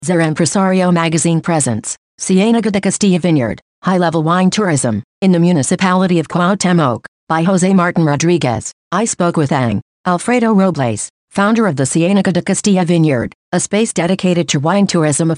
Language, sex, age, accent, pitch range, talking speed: English, female, 50-69, American, 160-190 Hz, 160 wpm